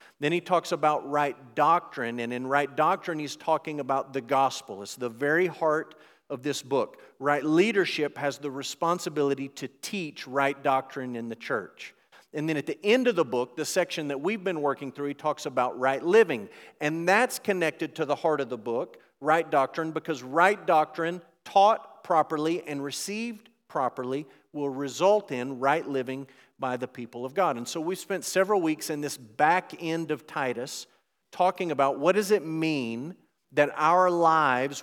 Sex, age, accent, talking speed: male, 40-59, American, 180 wpm